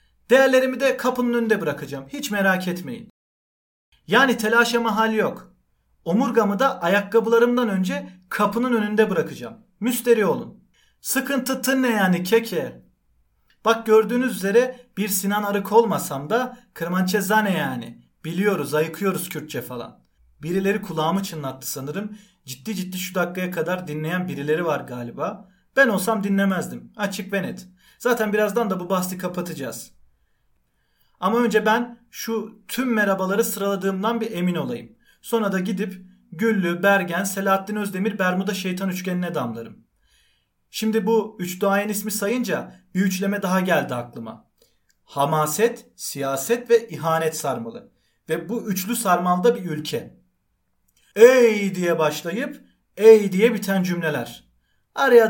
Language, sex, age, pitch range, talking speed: Turkish, male, 40-59, 175-230 Hz, 125 wpm